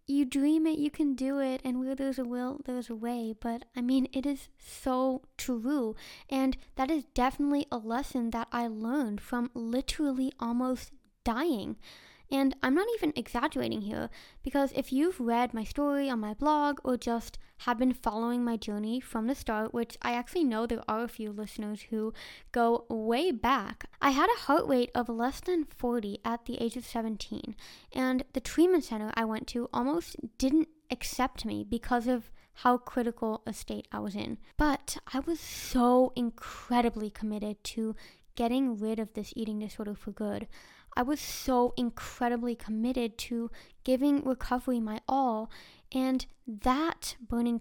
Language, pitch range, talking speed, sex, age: English, 230-275 Hz, 170 wpm, female, 10-29